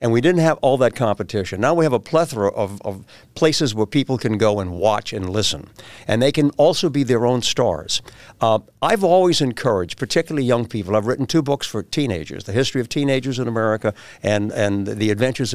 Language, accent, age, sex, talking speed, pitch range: English, American, 60-79, male, 210 wpm, 115-160 Hz